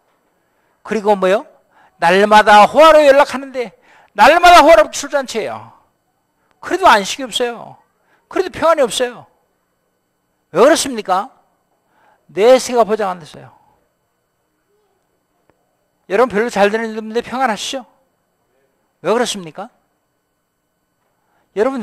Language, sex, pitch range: Korean, male, 195-275 Hz